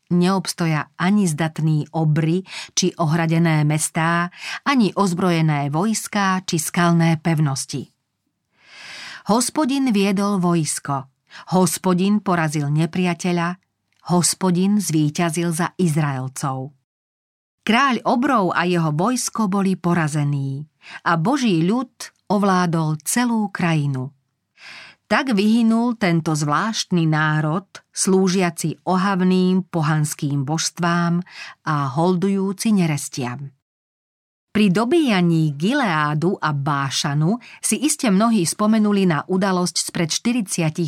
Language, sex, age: Slovak, female, 40-59